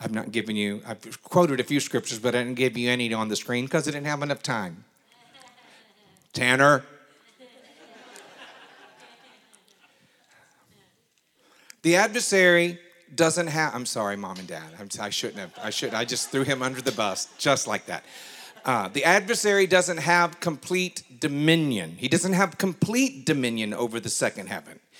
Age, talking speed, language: 50-69, 155 wpm, English